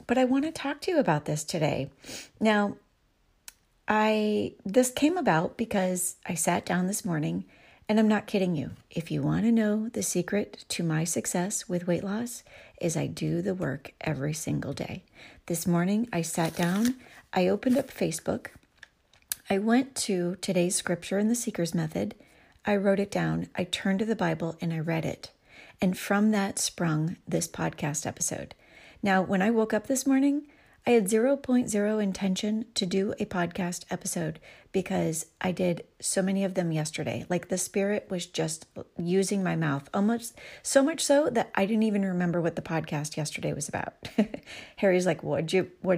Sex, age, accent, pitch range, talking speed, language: female, 40-59, American, 175-220 Hz, 175 wpm, English